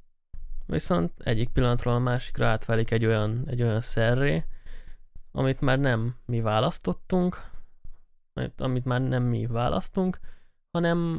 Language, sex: Hungarian, male